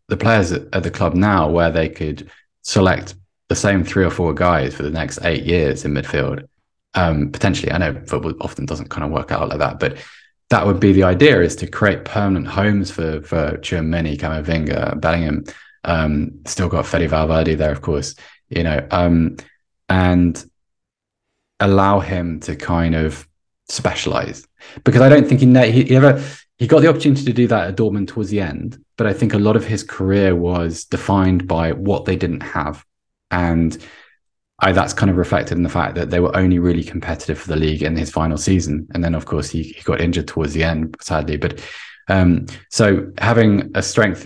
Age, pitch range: 20-39, 80-105 Hz